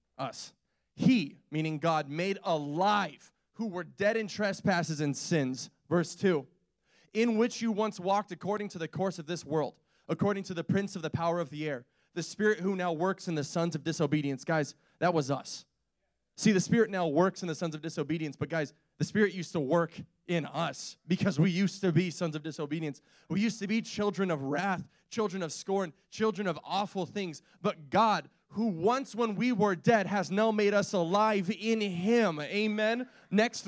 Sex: male